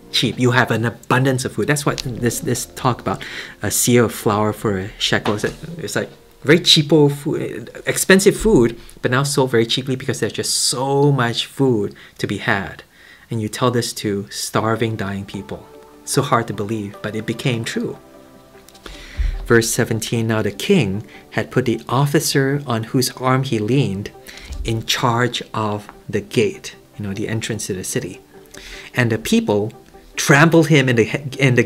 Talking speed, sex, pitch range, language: 180 wpm, male, 105-140 Hz, English